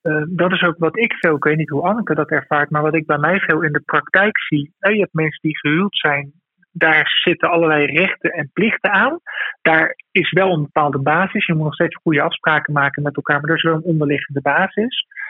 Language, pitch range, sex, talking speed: Dutch, 150-190 Hz, male, 230 wpm